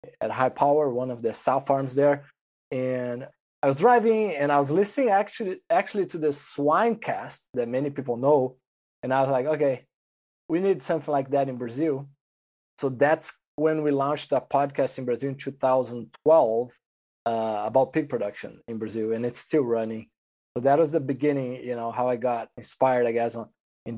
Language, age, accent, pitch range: English, 20-39, Brazilian, 125-160 Hz